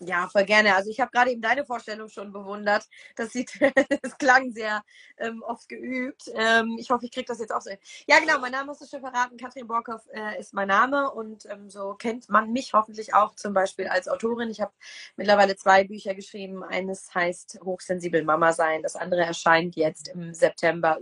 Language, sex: German, female